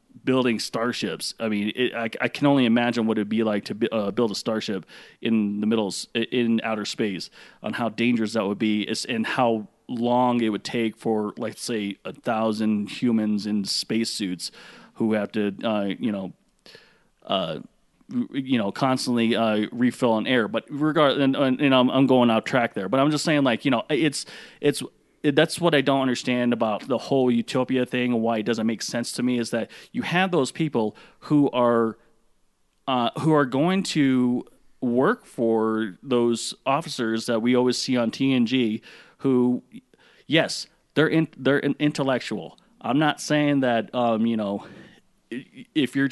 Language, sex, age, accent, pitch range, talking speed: English, male, 30-49, American, 110-135 Hz, 180 wpm